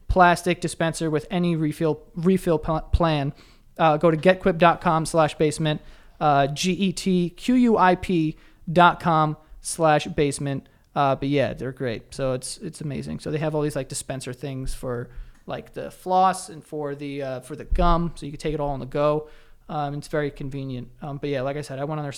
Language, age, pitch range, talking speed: English, 20-39, 140-170 Hz, 200 wpm